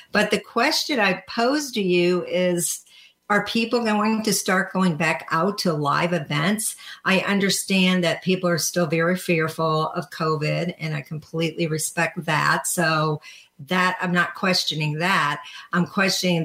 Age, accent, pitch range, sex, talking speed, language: 50-69, American, 160-195 Hz, female, 155 wpm, English